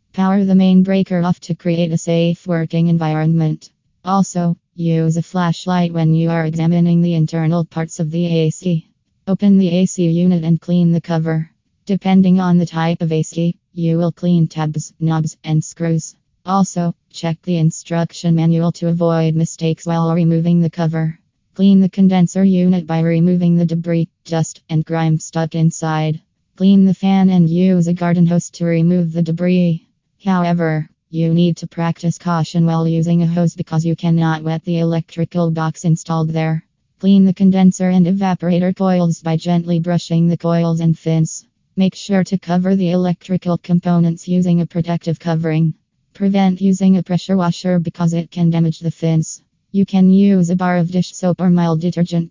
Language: English